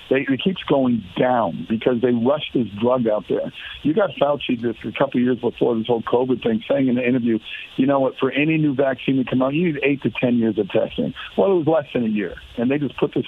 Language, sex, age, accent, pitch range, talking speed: English, male, 60-79, American, 115-145 Hz, 265 wpm